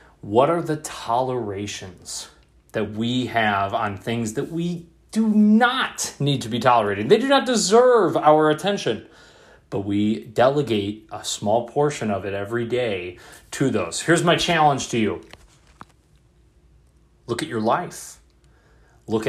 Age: 30-49